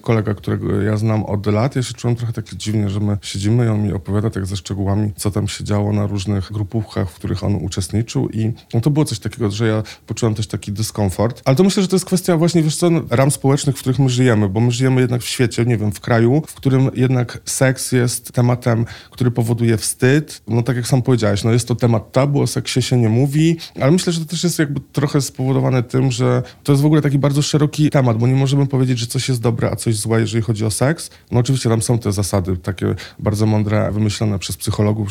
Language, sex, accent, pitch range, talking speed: Polish, male, native, 105-130 Hz, 240 wpm